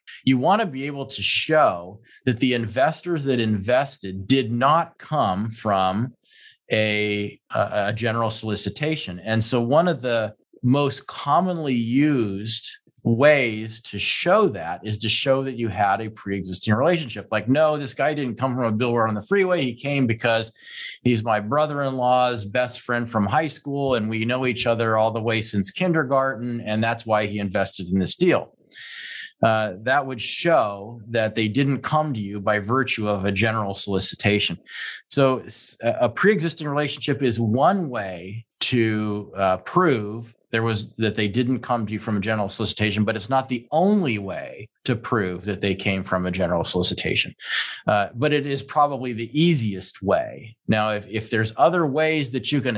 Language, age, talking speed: English, 40-59, 175 wpm